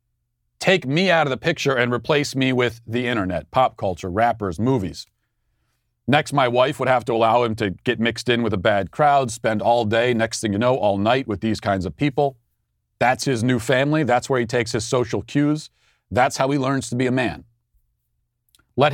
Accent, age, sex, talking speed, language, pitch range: American, 40-59, male, 210 wpm, English, 110-135 Hz